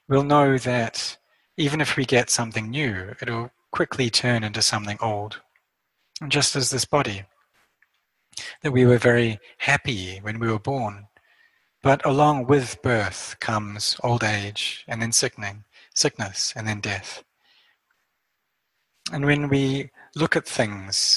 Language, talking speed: English, 140 wpm